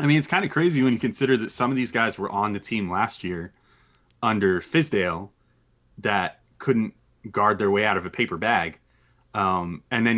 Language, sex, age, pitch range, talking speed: English, male, 30-49, 95-125 Hz, 205 wpm